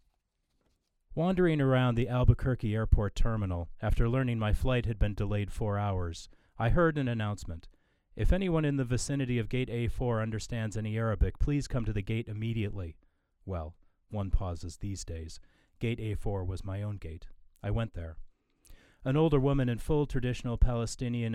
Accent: American